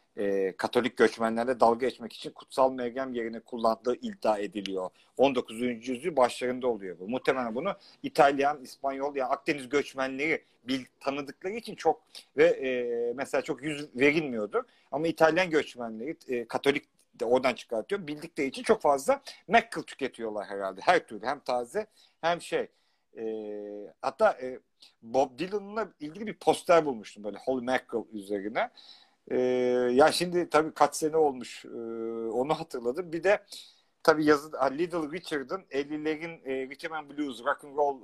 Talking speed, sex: 145 wpm, male